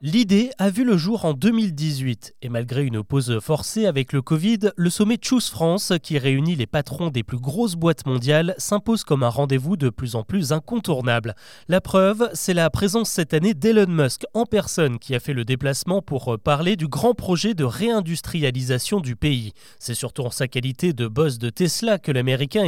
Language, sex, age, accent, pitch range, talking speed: French, male, 30-49, French, 135-195 Hz, 195 wpm